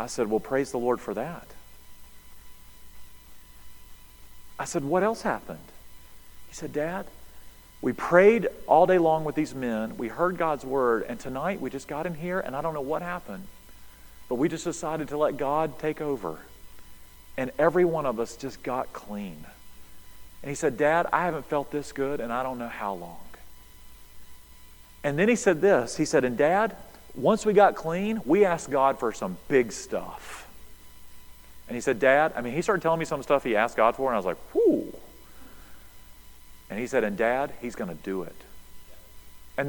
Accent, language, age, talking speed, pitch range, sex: American, English, 40-59, 190 wpm, 100-165 Hz, male